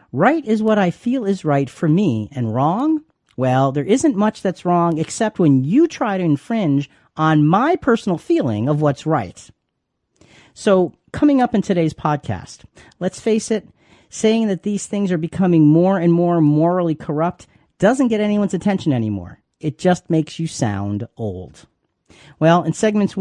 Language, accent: English, American